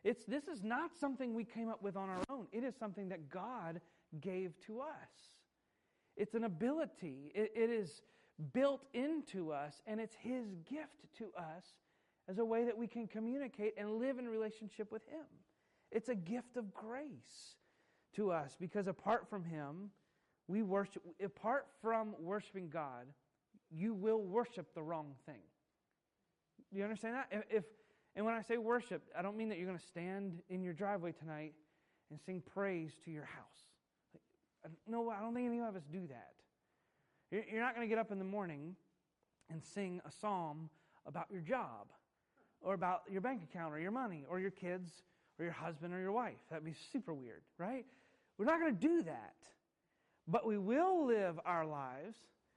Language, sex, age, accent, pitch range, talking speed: English, male, 30-49, American, 170-230 Hz, 180 wpm